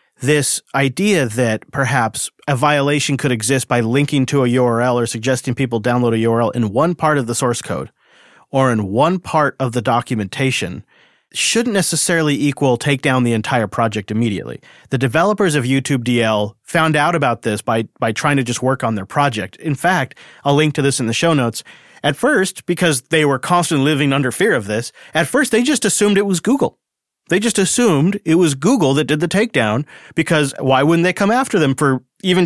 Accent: American